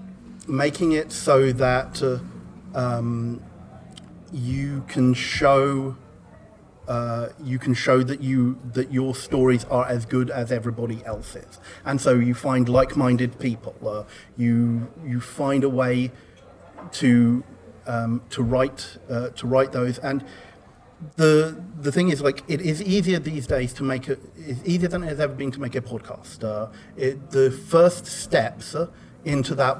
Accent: British